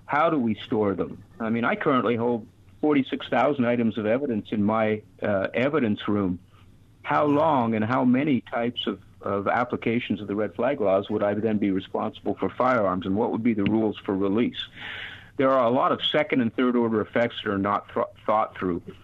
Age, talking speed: 50-69, 200 wpm